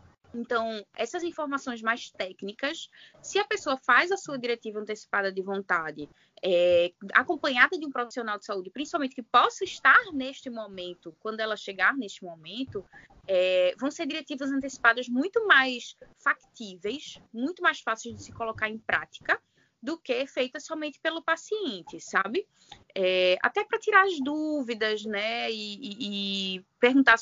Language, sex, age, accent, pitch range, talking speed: Portuguese, female, 20-39, Brazilian, 195-300 Hz, 150 wpm